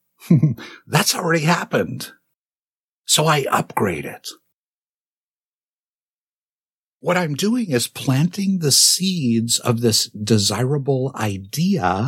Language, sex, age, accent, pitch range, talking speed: English, male, 50-69, American, 110-150 Hz, 90 wpm